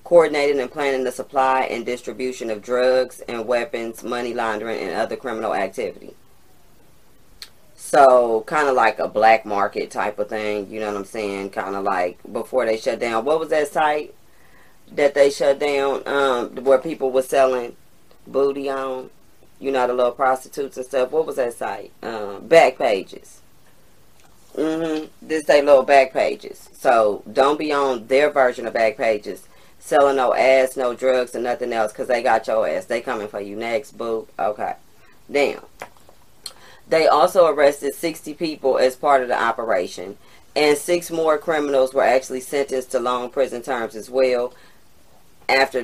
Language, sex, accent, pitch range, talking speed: English, female, American, 120-145 Hz, 165 wpm